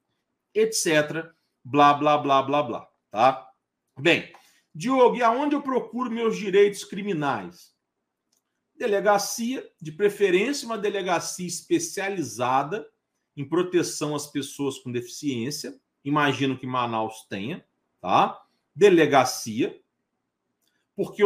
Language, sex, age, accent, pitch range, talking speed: Portuguese, male, 40-59, Brazilian, 160-220 Hz, 100 wpm